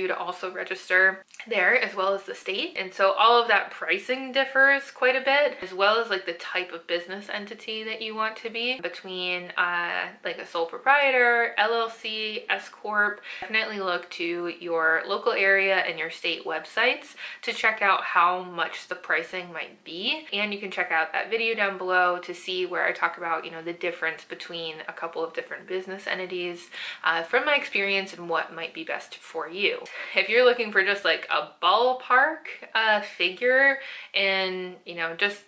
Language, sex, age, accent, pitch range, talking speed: English, female, 20-39, American, 180-240 Hz, 190 wpm